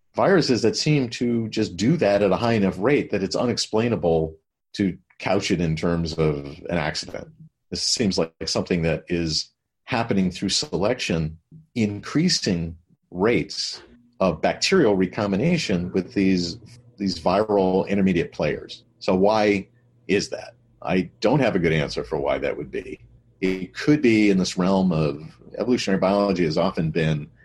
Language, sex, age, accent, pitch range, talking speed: English, male, 40-59, American, 95-125 Hz, 155 wpm